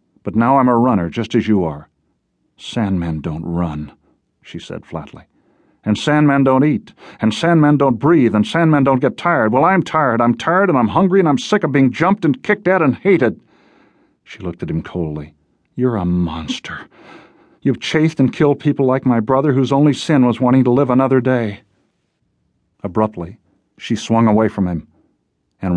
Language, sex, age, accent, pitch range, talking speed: English, male, 40-59, American, 95-130 Hz, 185 wpm